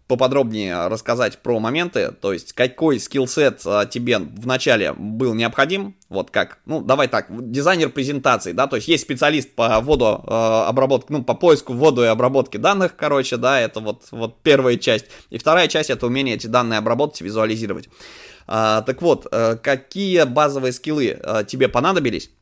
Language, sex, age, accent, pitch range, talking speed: Russian, male, 20-39, native, 110-135 Hz, 165 wpm